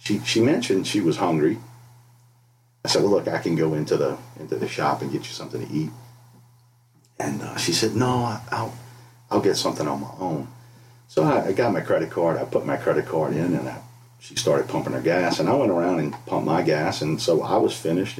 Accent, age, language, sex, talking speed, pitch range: American, 50-69, English, male, 230 wpm, 120-130 Hz